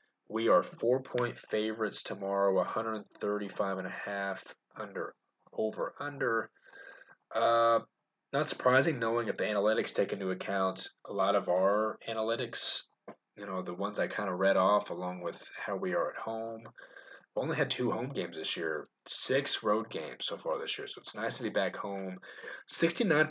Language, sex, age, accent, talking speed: English, male, 20-39, American, 185 wpm